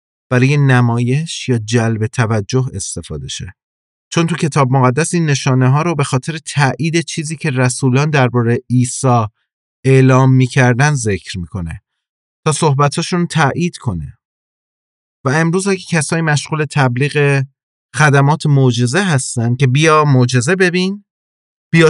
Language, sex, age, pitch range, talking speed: English, male, 30-49, 125-150 Hz, 125 wpm